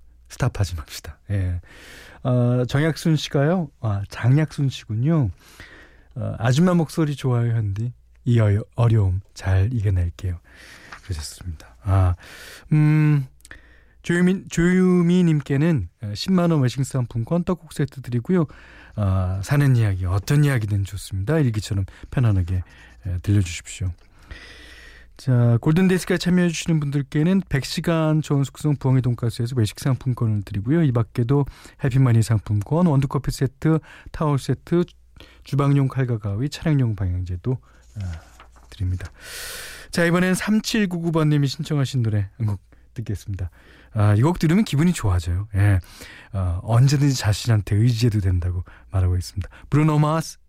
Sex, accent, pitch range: male, native, 95-145 Hz